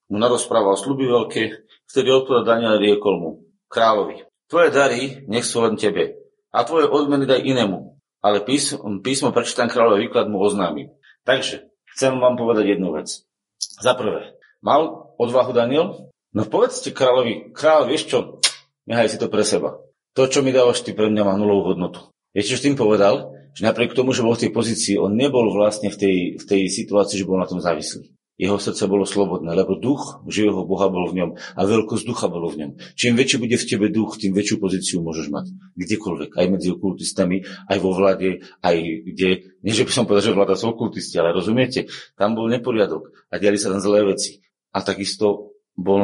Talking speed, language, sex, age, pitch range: 190 wpm, Slovak, male, 40-59, 95-120 Hz